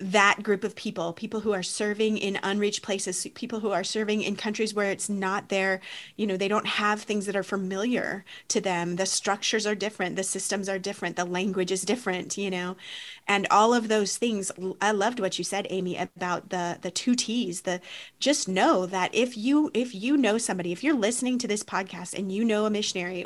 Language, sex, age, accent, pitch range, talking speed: English, female, 30-49, American, 190-215 Hz, 215 wpm